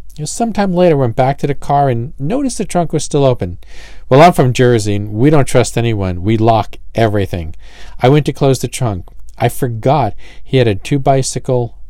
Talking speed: 200 wpm